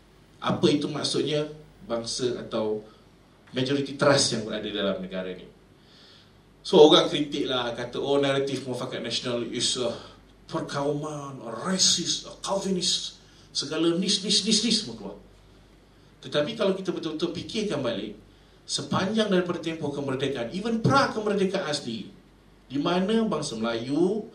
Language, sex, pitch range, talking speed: Malay, male, 125-200 Hz, 120 wpm